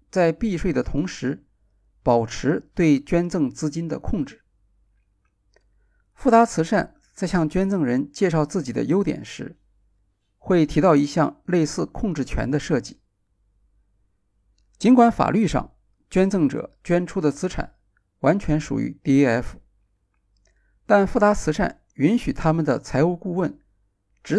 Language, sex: Chinese, male